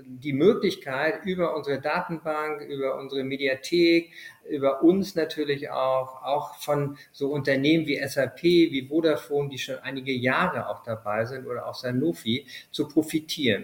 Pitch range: 130-155 Hz